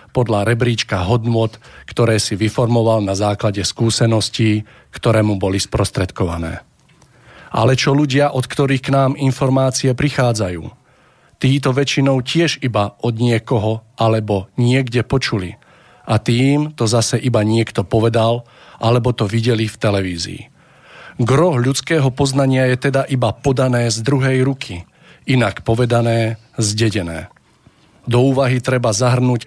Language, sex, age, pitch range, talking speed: Slovak, male, 40-59, 110-130 Hz, 120 wpm